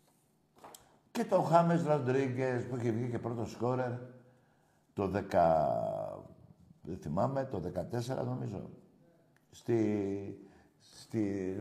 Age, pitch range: 60-79, 100-130 Hz